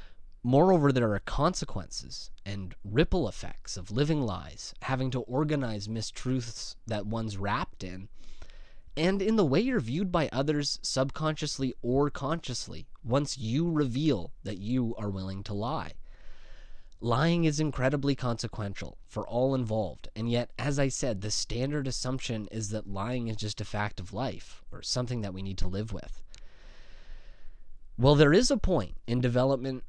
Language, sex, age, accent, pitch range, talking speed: English, male, 20-39, American, 105-140 Hz, 155 wpm